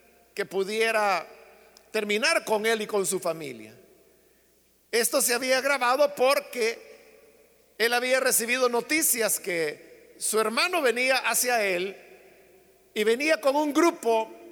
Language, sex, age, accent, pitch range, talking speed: Spanish, male, 50-69, Mexican, 210-280 Hz, 120 wpm